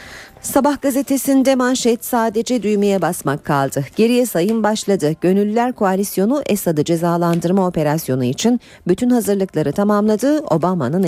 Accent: native